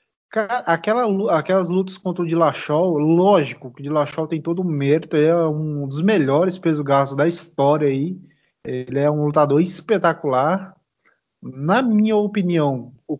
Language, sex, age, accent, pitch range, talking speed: Portuguese, male, 20-39, Brazilian, 140-175 Hz, 150 wpm